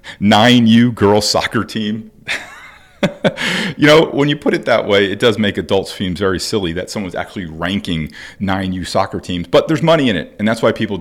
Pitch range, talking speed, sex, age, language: 90-110 Hz, 190 wpm, male, 40-59, English